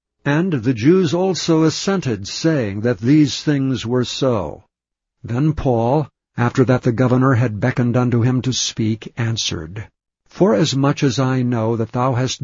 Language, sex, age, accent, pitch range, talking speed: English, male, 60-79, American, 120-145 Hz, 150 wpm